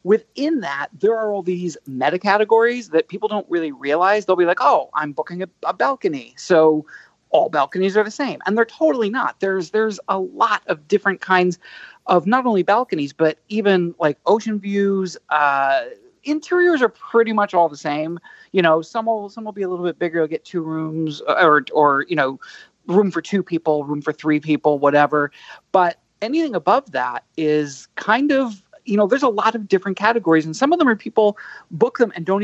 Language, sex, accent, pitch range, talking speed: English, male, American, 155-215 Hz, 200 wpm